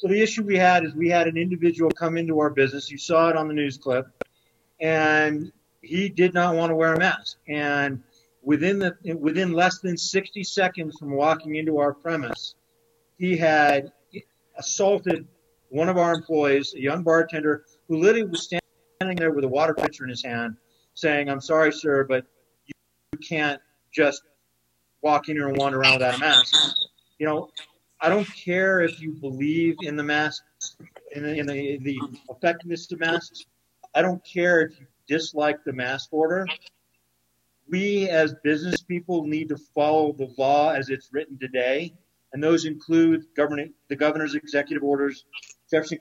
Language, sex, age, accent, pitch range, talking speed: English, male, 50-69, American, 140-165 Hz, 170 wpm